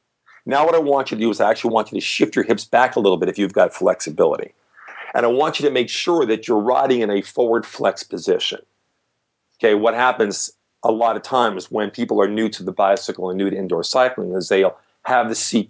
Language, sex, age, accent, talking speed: English, male, 50-69, American, 240 wpm